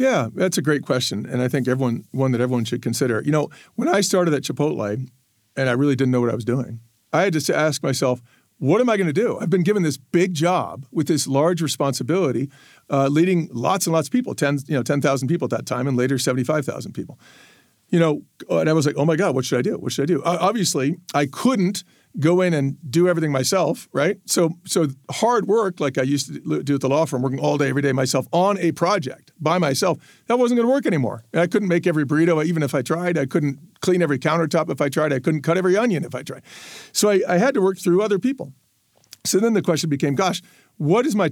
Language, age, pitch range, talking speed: English, 50-69, 135-175 Hz, 245 wpm